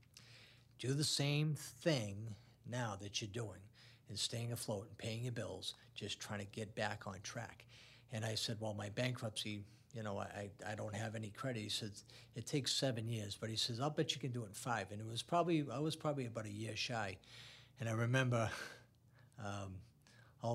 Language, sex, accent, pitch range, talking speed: English, male, American, 105-120 Hz, 200 wpm